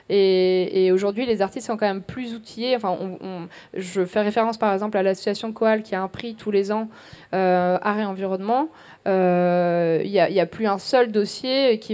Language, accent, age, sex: French, French, 20-39, female